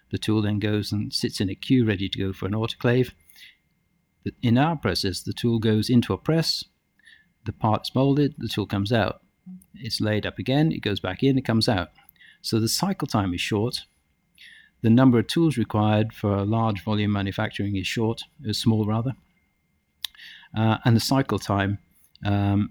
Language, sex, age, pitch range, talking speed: English, male, 50-69, 100-120 Hz, 180 wpm